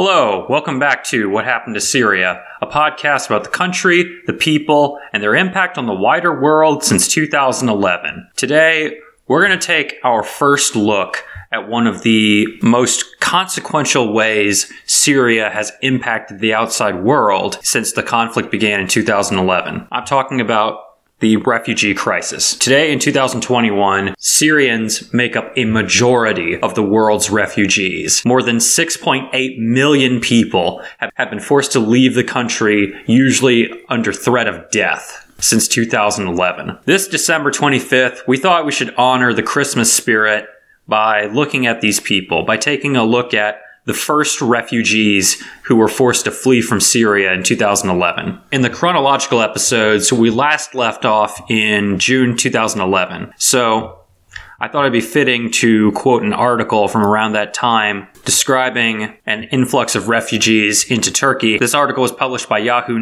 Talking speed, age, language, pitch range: 150 wpm, 20-39, English, 105-130 Hz